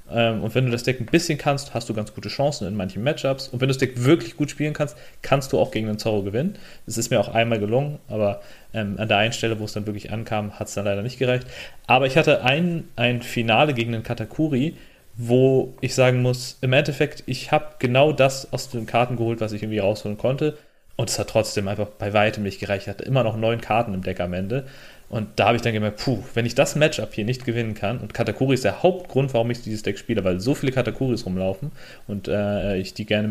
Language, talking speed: German, 245 wpm